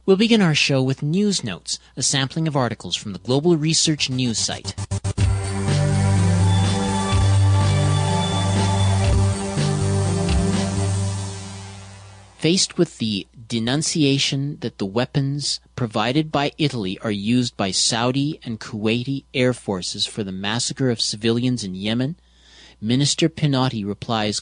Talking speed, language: 110 wpm, English